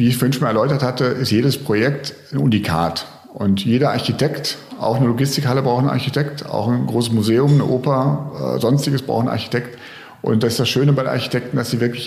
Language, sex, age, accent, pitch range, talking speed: German, male, 40-59, German, 110-140 Hz, 215 wpm